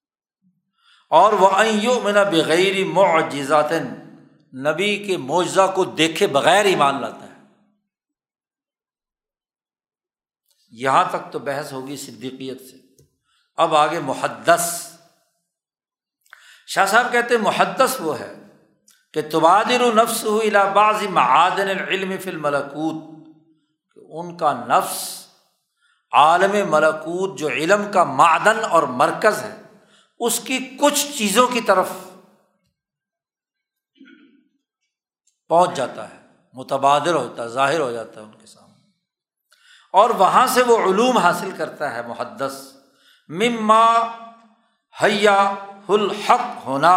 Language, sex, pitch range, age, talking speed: Urdu, male, 155-215 Hz, 60-79, 105 wpm